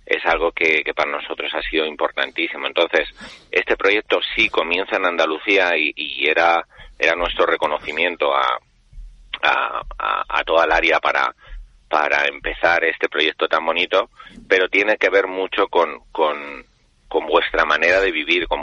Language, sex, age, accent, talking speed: Spanish, male, 30-49, Spanish, 160 wpm